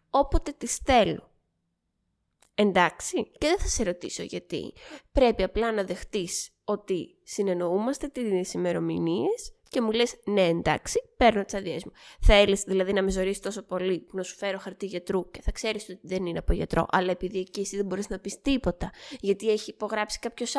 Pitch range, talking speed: 185-260 Hz, 180 wpm